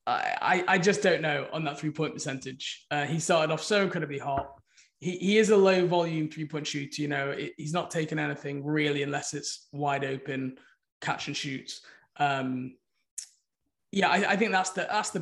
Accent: British